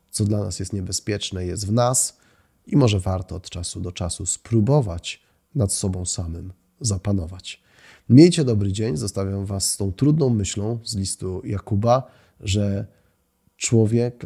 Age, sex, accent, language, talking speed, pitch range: 30-49, male, native, Polish, 145 wpm, 95-120 Hz